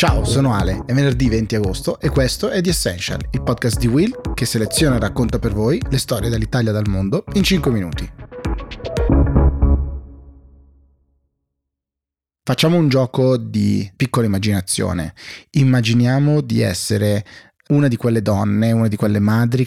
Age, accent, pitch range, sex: 30-49, native, 100-120 Hz, male